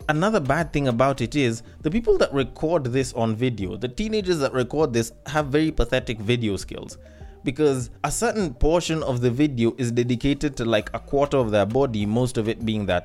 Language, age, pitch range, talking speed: English, 20-39, 110-140 Hz, 200 wpm